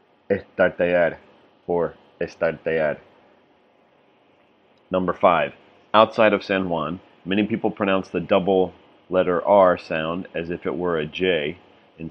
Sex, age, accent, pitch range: male, 40-59, American, 85-95 Hz